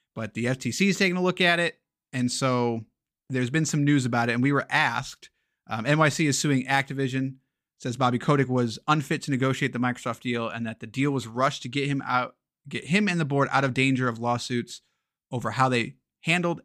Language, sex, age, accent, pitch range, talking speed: English, male, 30-49, American, 125-155 Hz, 215 wpm